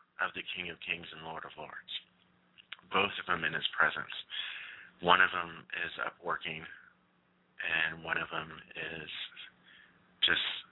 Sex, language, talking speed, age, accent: male, English, 150 wpm, 40-59, American